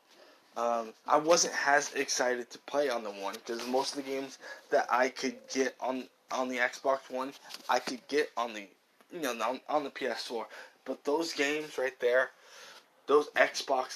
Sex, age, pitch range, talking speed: male, 20-39, 125-150 Hz, 175 wpm